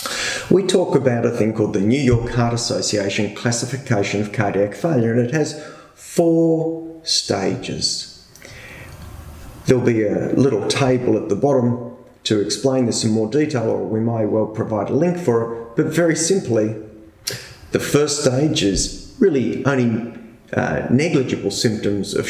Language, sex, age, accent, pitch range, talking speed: English, male, 30-49, Australian, 105-130 Hz, 150 wpm